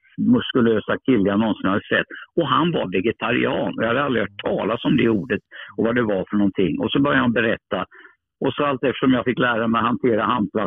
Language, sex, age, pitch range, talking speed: Swedish, male, 60-79, 105-130 Hz, 225 wpm